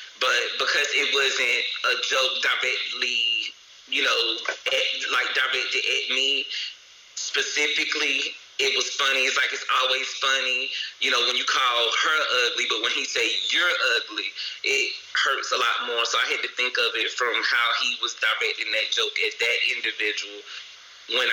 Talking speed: 165 wpm